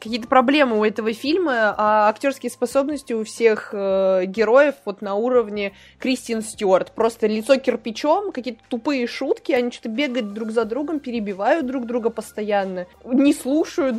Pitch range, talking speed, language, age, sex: 220-265 Hz, 150 wpm, Russian, 20-39, female